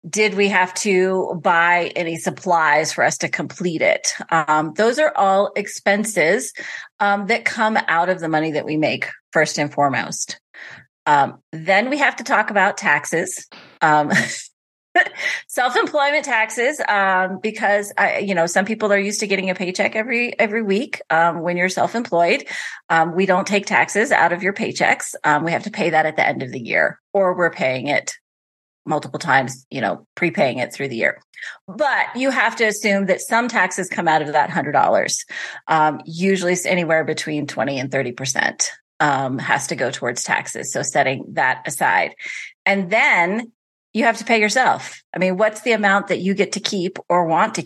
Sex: female